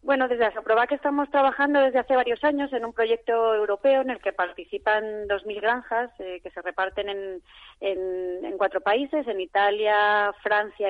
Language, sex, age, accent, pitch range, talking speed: Spanish, female, 30-49, Spanish, 195-230 Hz, 185 wpm